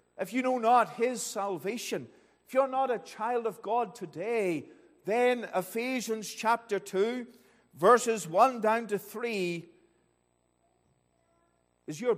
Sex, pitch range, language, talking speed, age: male, 200-255 Hz, English, 125 wpm, 50-69